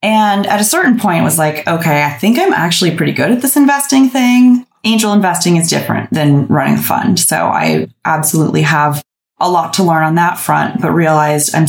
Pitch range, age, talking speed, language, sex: 155-185 Hz, 20-39, 205 wpm, English, female